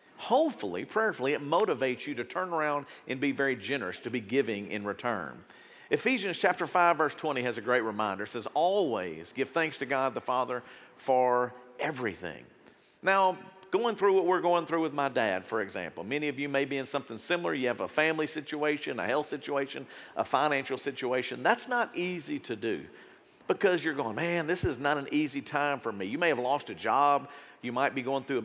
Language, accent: English, American